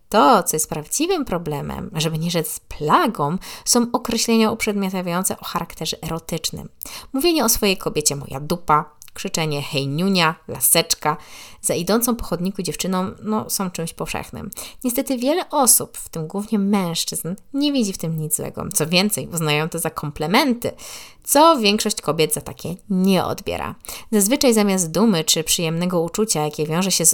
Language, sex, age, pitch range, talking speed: Polish, female, 20-39, 155-215 Hz, 150 wpm